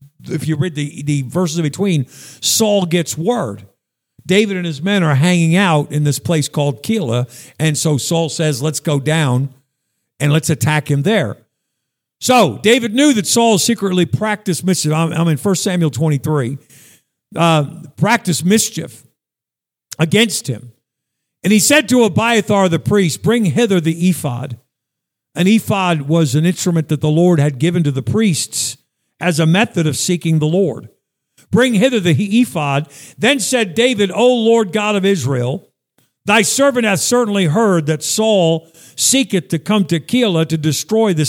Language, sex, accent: English, male, American